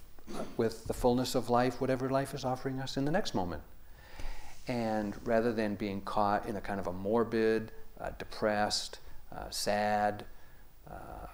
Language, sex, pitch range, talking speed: English, male, 95-120 Hz, 160 wpm